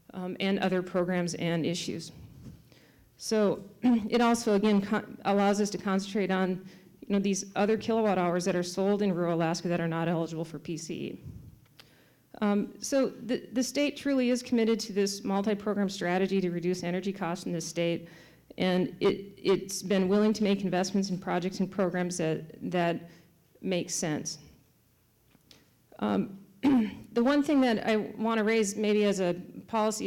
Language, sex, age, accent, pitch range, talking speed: English, female, 40-59, American, 180-210 Hz, 160 wpm